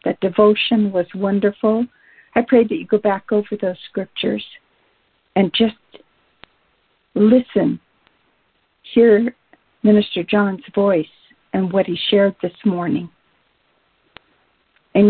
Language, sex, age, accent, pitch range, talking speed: English, female, 50-69, American, 175-215 Hz, 105 wpm